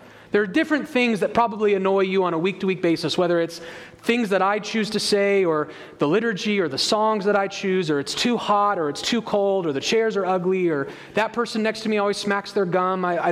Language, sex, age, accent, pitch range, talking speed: English, male, 30-49, American, 165-225 Hz, 245 wpm